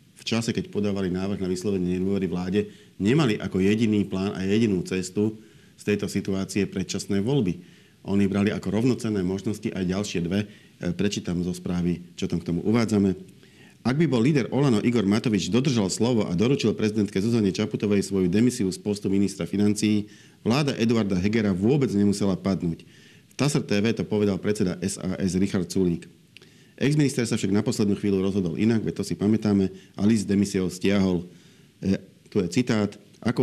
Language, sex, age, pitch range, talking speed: Slovak, male, 40-59, 95-110 Hz, 165 wpm